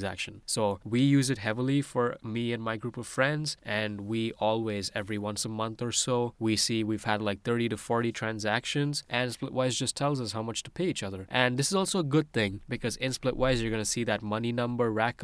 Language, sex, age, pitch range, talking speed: English, male, 20-39, 100-125 Hz, 230 wpm